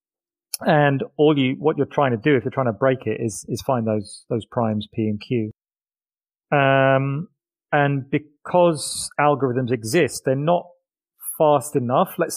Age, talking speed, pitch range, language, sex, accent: 40-59, 160 wpm, 120-145 Hz, English, male, British